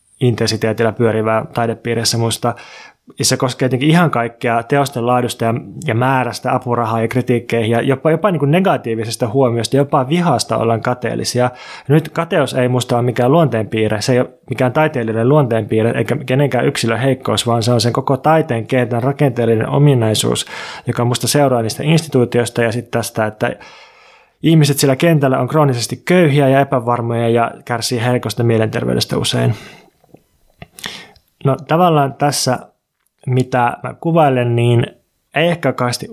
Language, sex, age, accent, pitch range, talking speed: Finnish, male, 20-39, native, 115-140 Hz, 140 wpm